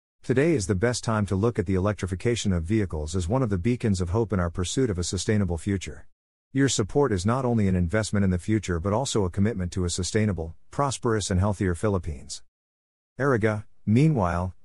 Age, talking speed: 50-69, 200 wpm